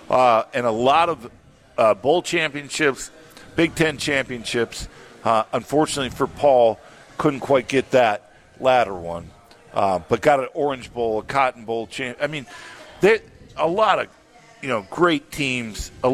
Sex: male